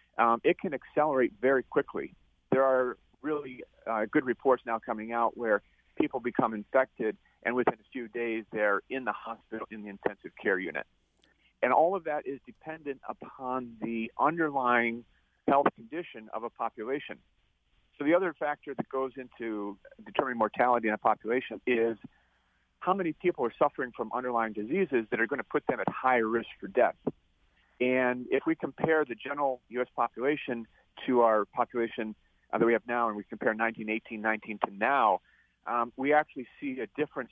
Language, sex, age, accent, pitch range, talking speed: English, male, 50-69, American, 110-135 Hz, 170 wpm